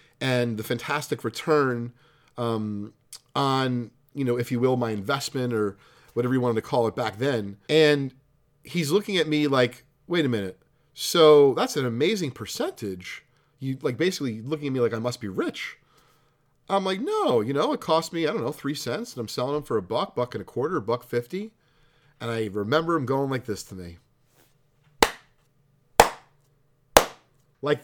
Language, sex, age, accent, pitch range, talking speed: English, male, 40-59, American, 125-170 Hz, 180 wpm